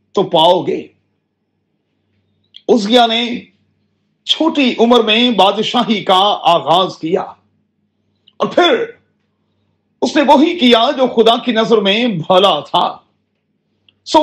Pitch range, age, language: 190-255 Hz, 40-59, Urdu